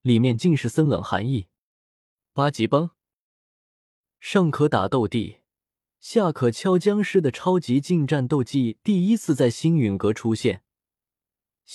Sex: male